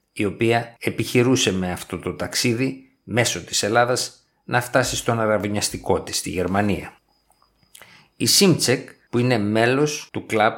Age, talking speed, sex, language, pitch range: 50-69, 135 wpm, male, Greek, 105-135 Hz